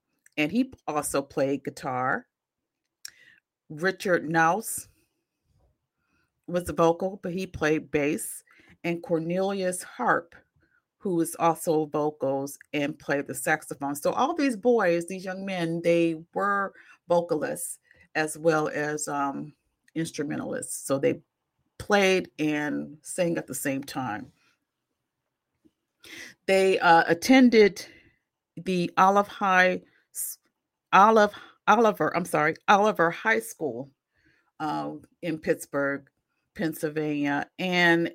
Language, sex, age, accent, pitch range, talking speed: English, female, 40-59, American, 150-185 Hz, 105 wpm